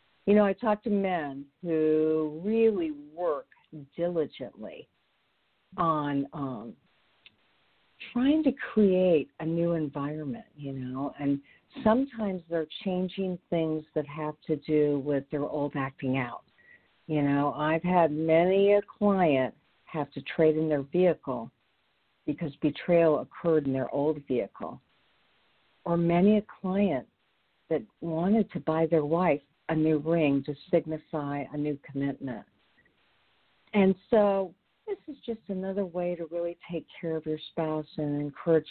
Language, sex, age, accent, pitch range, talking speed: English, female, 50-69, American, 150-200 Hz, 135 wpm